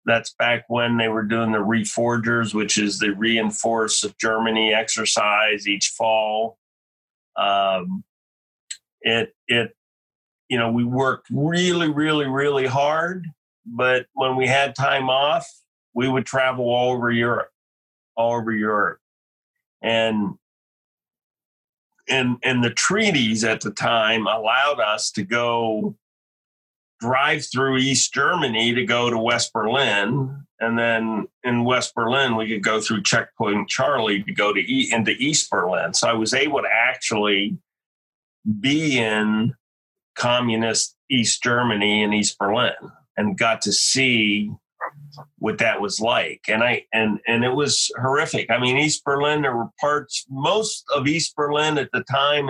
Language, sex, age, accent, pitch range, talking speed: English, male, 40-59, American, 110-135 Hz, 140 wpm